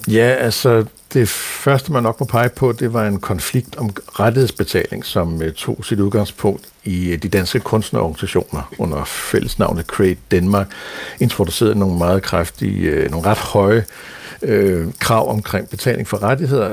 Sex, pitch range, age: male, 95-125 Hz, 60-79